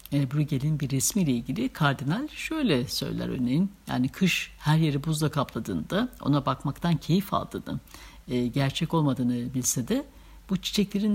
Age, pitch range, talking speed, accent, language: 60-79, 135-205 Hz, 135 wpm, native, Turkish